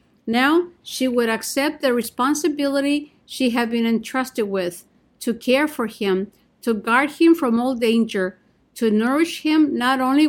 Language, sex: English, female